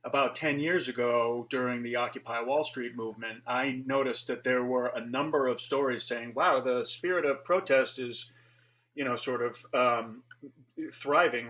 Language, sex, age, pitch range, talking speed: English, male, 40-59, 120-140 Hz, 165 wpm